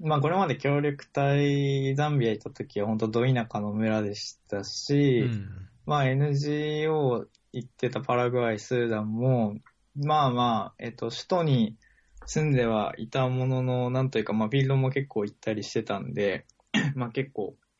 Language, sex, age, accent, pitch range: Japanese, male, 20-39, native, 110-135 Hz